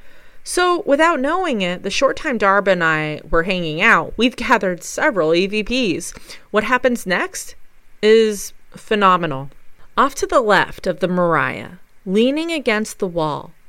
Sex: female